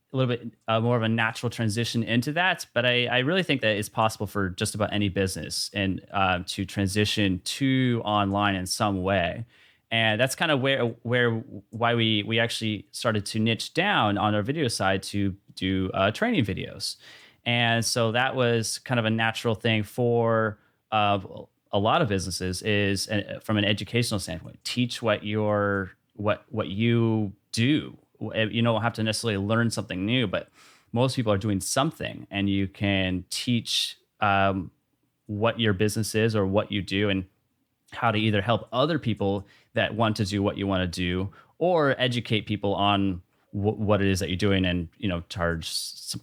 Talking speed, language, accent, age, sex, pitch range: 185 wpm, English, American, 30-49, male, 100-115 Hz